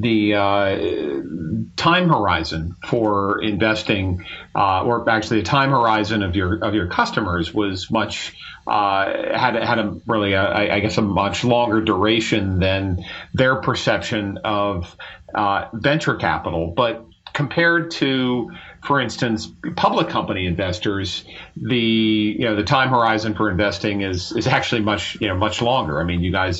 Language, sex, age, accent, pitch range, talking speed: English, male, 40-59, American, 95-115 Hz, 145 wpm